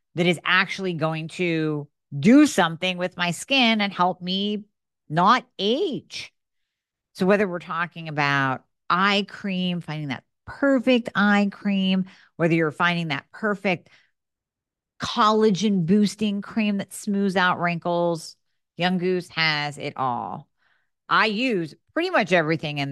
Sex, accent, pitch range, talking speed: female, American, 150-185 Hz, 130 wpm